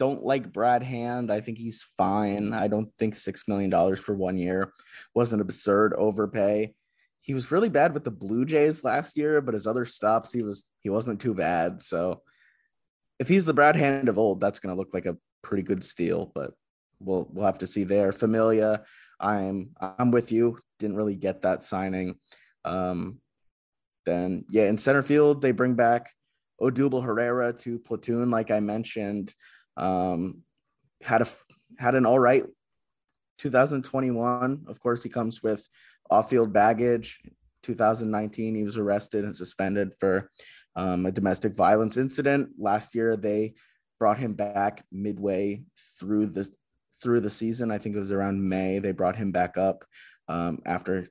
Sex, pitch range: male, 95-120 Hz